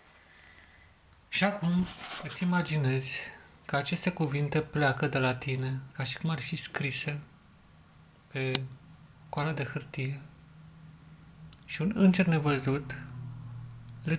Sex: male